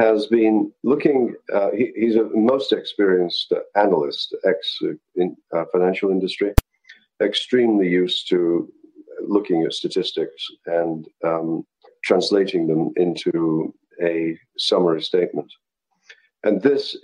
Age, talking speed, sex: 50-69, 110 wpm, male